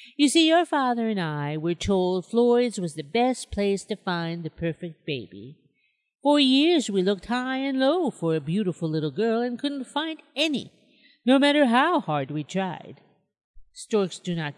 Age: 50-69